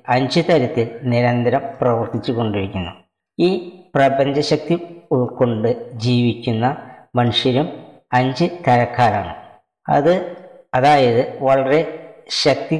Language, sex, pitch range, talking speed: Malayalam, female, 120-150 Hz, 75 wpm